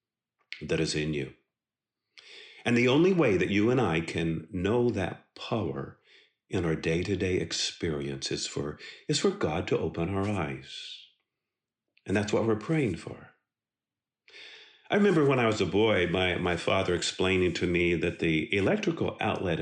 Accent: American